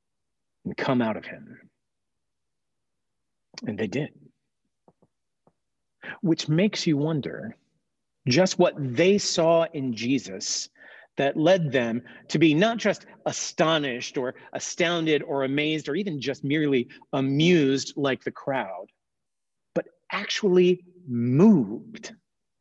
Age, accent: 40-59, American